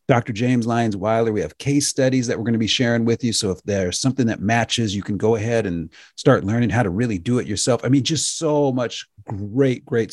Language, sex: English, male